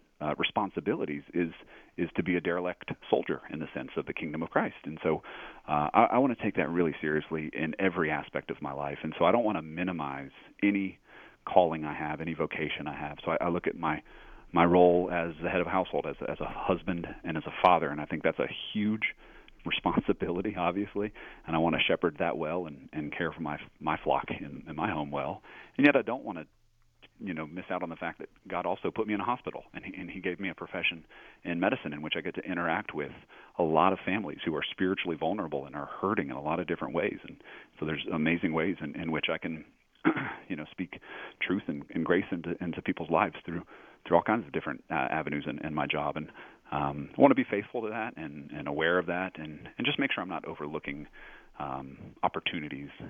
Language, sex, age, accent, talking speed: English, male, 40-59, American, 235 wpm